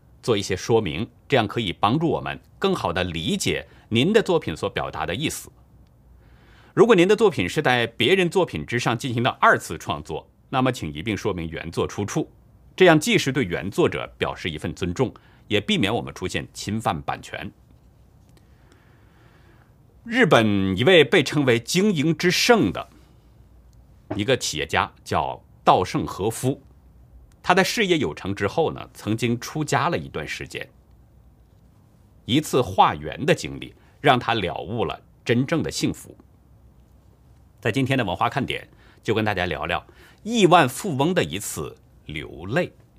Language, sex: Chinese, male